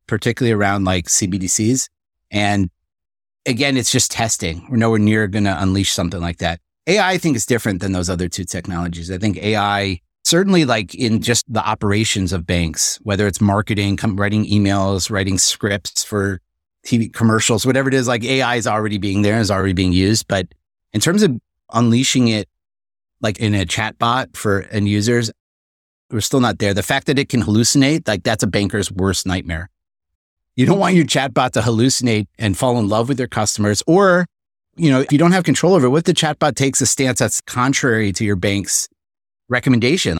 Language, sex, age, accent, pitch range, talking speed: English, male, 30-49, American, 95-125 Hz, 190 wpm